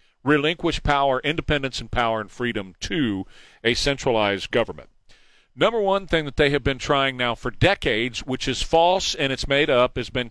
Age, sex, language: 40-59, male, English